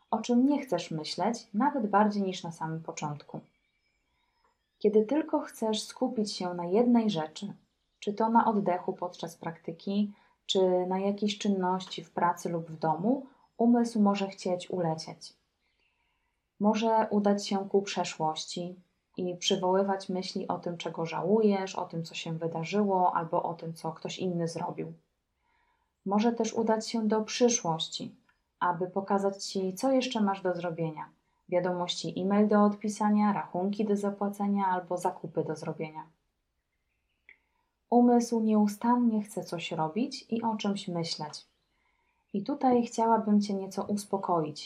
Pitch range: 170-215 Hz